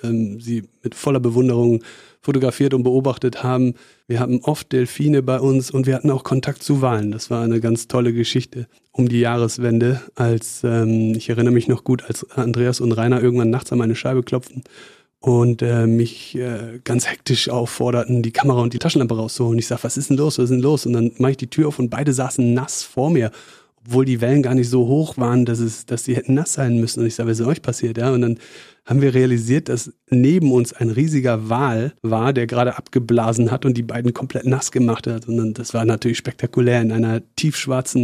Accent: German